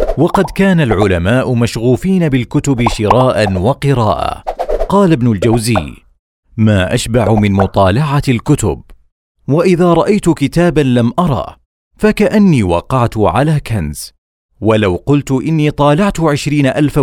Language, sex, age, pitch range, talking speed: Arabic, male, 40-59, 105-150 Hz, 105 wpm